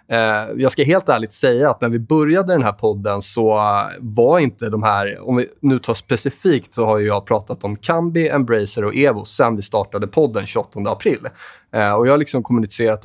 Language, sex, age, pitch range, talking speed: Swedish, male, 20-39, 105-135 Hz, 195 wpm